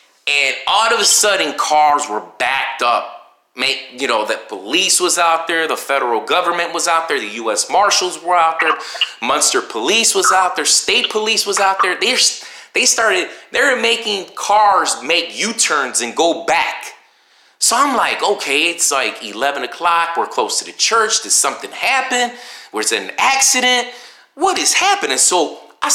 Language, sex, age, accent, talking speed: English, male, 30-49, American, 175 wpm